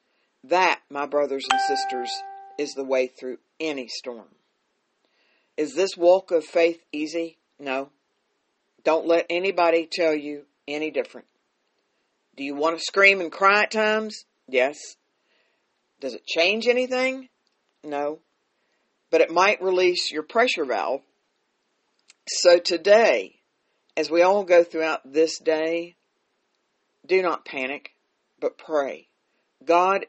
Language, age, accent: English, 50-69, American